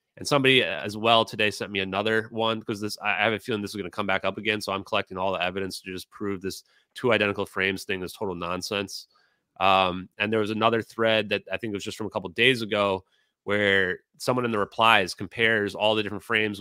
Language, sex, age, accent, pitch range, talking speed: English, male, 30-49, American, 95-120 Hz, 245 wpm